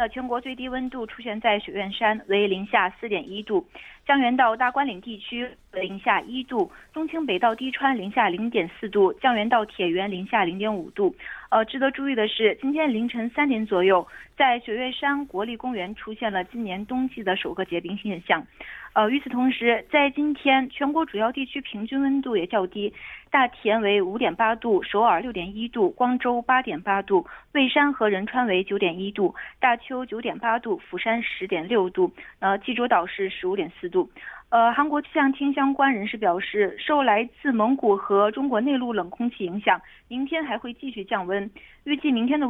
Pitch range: 205-275 Hz